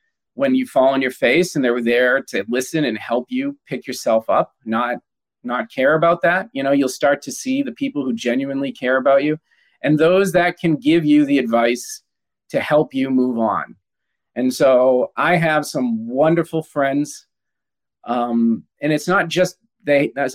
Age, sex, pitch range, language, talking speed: 40-59, male, 125-160 Hz, English, 185 wpm